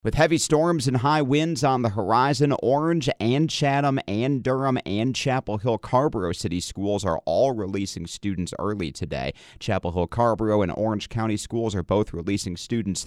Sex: male